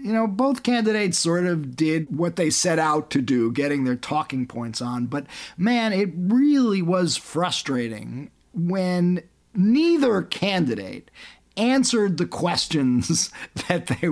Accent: American